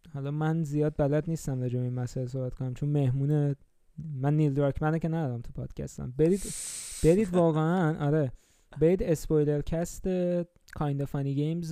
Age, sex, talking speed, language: 20-39, male, 150 wpm, Persian